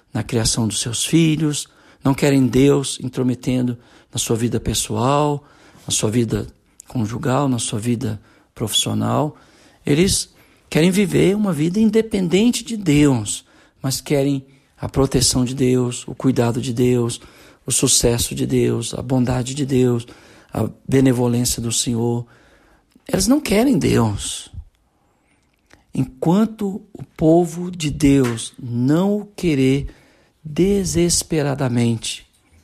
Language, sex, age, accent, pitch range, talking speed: Portuguese, male, 60-79, Brazilian, 110-145 Hz, 120 wpm